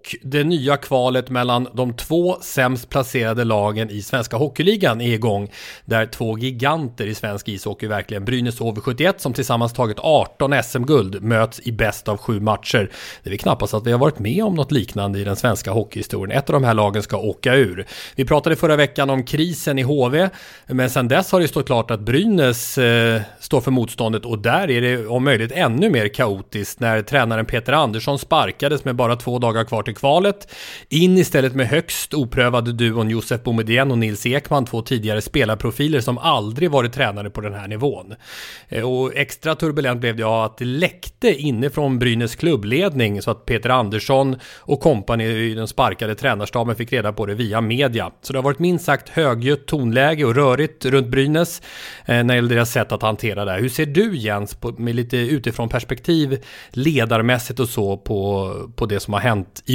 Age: 30-49